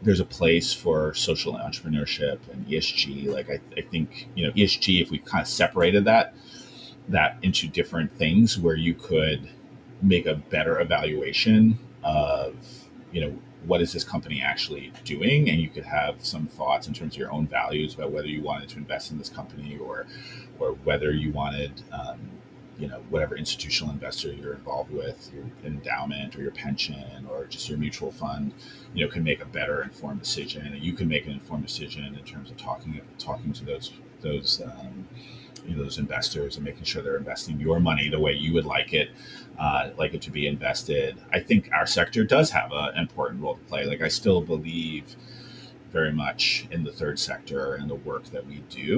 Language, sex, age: English, male, 30-49